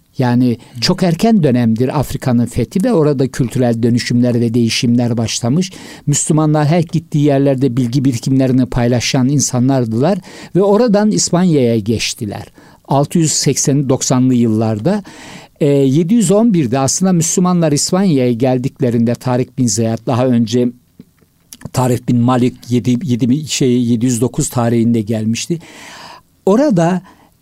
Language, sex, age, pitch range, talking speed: Turkish, male, 60-79, 125-160 Hz, 95 wpm